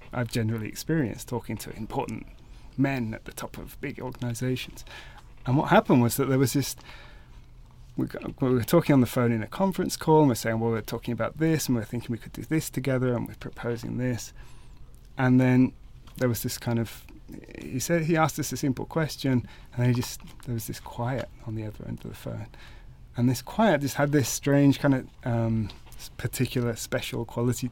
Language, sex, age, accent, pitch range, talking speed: English, male, 30-49, British, 115-135 Hz, 210 wpm